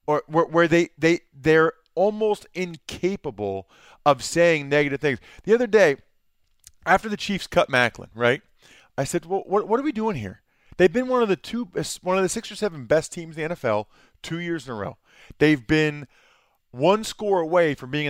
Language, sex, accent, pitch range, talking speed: English, male, American, 135-195 Hz, 195 wpm